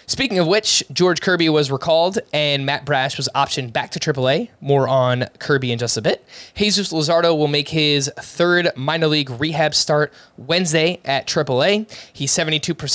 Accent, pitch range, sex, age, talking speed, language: American, 135-170 Hz, male, 20-39, 165 wpm, English